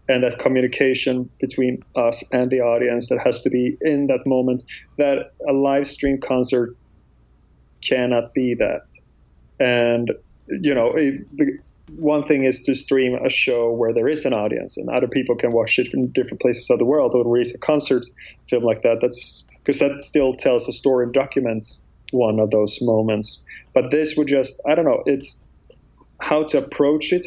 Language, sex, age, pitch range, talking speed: English, male, 20-39, 115-135 Hz, 180 wpm